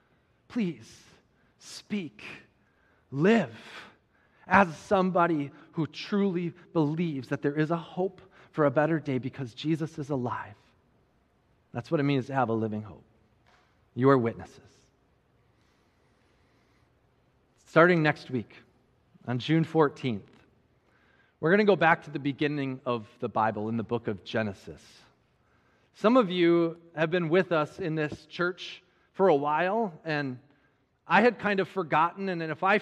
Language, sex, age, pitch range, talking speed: English, male, 30-49, 130-180 Hz, 140 wpm